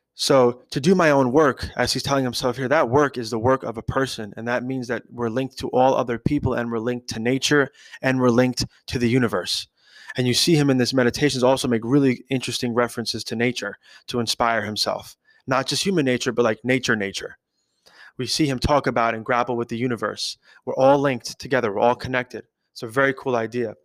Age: 20-39